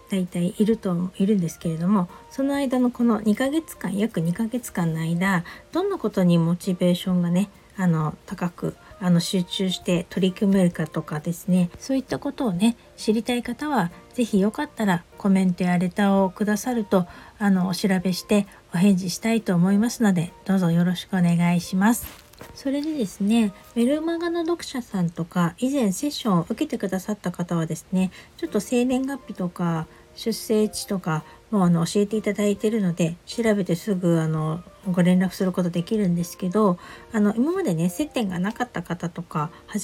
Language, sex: Japanese, female